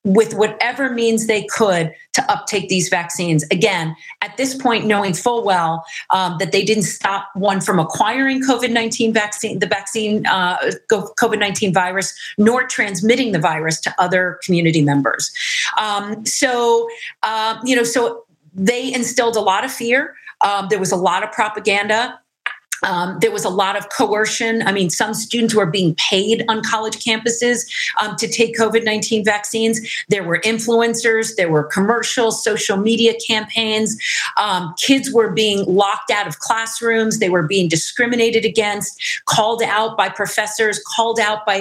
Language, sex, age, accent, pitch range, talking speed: English, female, 40-59, American, 190-230 Hz, 155 wpm